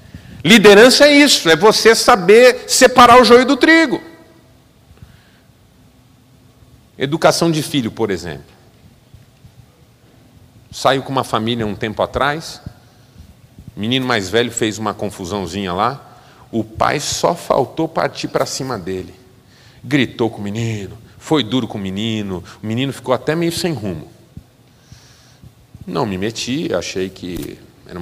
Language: Portuguese